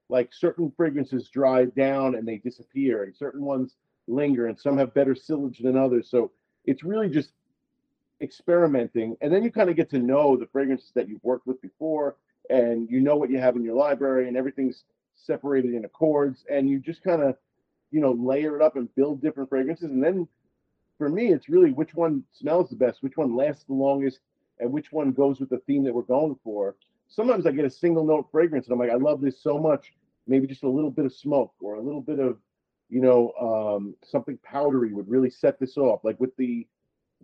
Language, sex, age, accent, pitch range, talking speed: English, male, 40-59, American, 125-150 Hz, 215 wpm